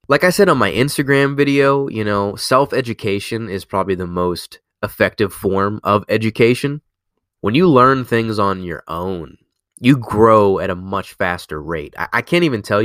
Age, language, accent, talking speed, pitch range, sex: 20-39, English, American, 175 wpm, 95-120 Hz, male